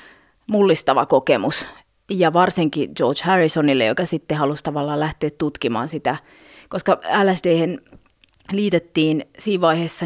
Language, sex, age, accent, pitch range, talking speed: Finnish, female, 30-49, native, 155-185 Hz, 100 wpm